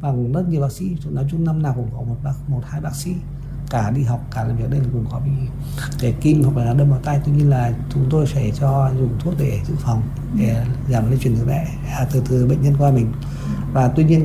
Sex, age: male, 60-79